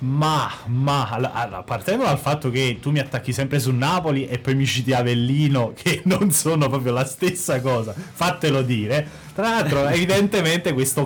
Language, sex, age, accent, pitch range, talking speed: Italian, male, 30-49, native, 125-155 Hz, 170 wpm